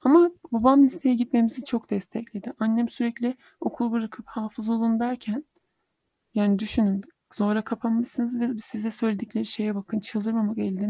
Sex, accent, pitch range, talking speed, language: male, native, 205-245 Hz, 130 wpm, Turkish